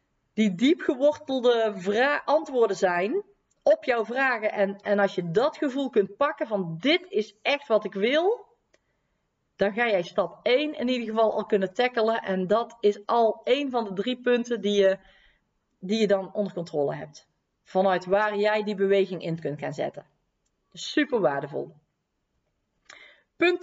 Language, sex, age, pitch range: Dutch, female, 40-59, 200-265 Hz